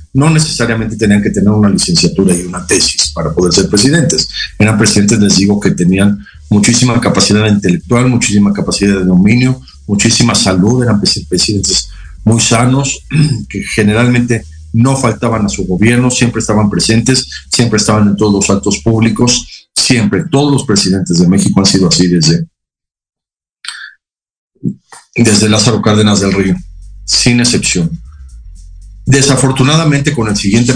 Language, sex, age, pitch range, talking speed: Spanish, male, 50-69, 95-115 Hz, 140 wpm